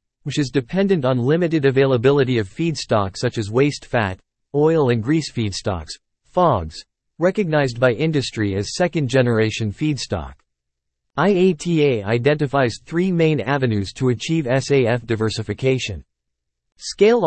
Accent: American